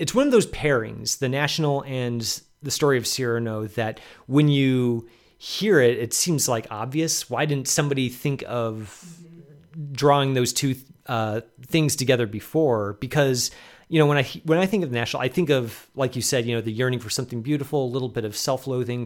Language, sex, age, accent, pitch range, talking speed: English, male, 30-49, American, 115-145 Hz, 195 wpm